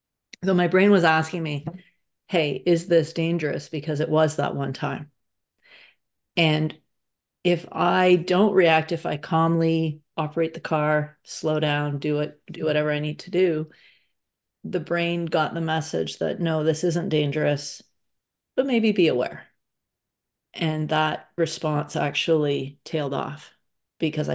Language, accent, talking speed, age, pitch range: English, American, 145 wpm, 40-59, 150-170 Hz